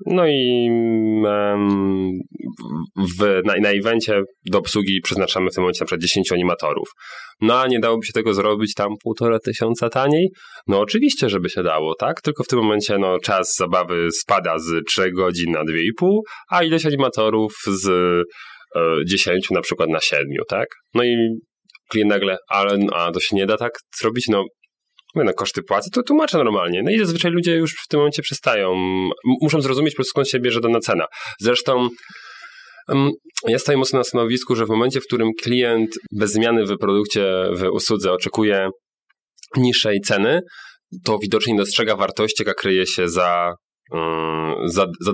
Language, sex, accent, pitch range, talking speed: Polish, male, native, 95-125 Hz, 170 wpm